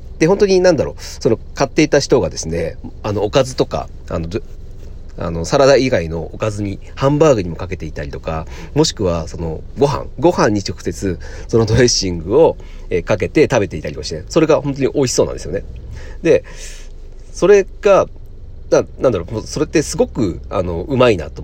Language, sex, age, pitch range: Japanese, male, 40-59, 85-140 Hz